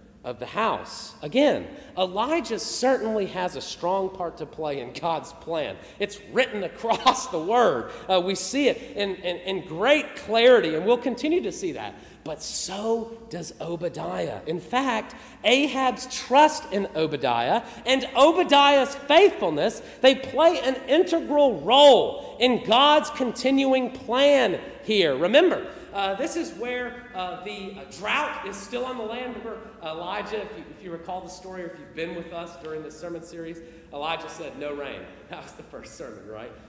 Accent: American